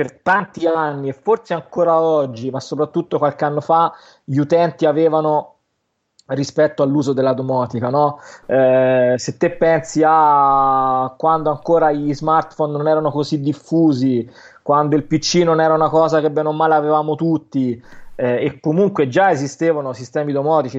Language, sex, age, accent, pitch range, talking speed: Italian, male, 20-39, native, 140-165 Hz, 150 wpm